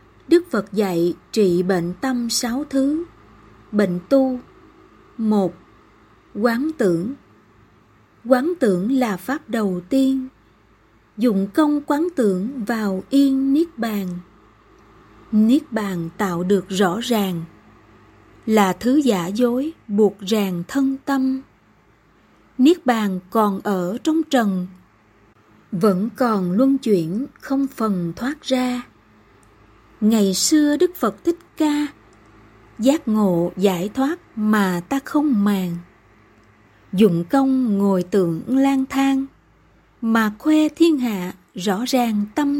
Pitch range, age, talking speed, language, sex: 185-270 Hz, 20-39, 115 wpm, Vietnamese, female